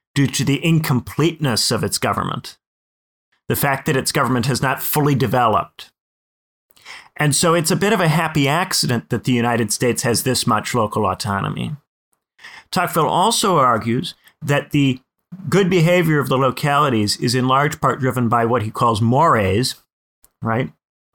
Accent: American